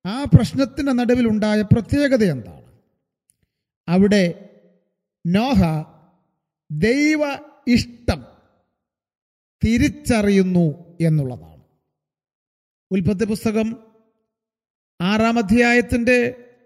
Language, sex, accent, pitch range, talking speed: Malayalam, male, native, 170-240 Hz, 50 wpm